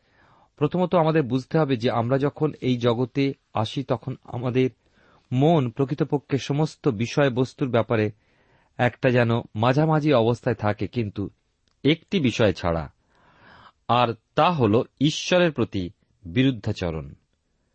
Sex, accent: male, native